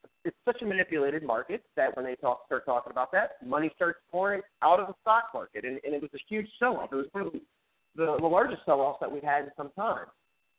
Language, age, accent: English, 30-49, American